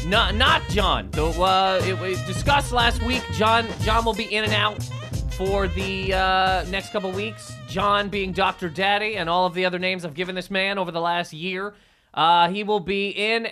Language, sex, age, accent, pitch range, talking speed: English, male, 30-49, American, 190-235 Hz, 205 wpm